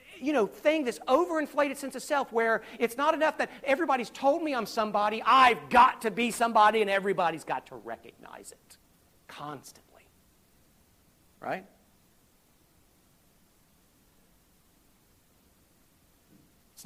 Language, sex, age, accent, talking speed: English, male, 50-69, American, 115 wpm